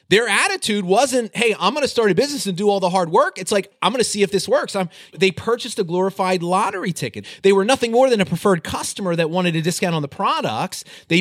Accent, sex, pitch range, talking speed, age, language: American, male, 120-190 Hz, 250 wpm, 30-49, English